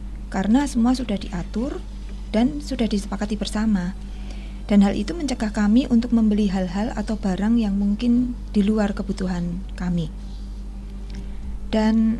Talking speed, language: 125 wpm, Indonesian